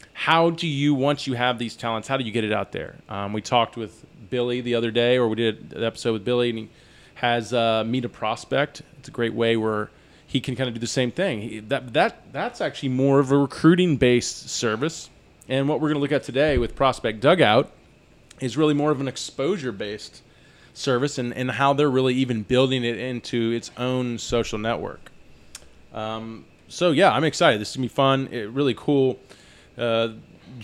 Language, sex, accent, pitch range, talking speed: English, male, American, 115-135 Hz, 210 wpm